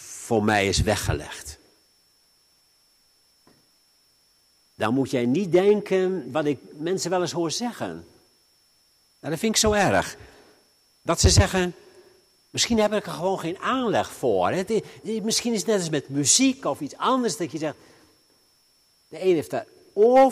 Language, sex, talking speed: Dutch, male, 155 wpm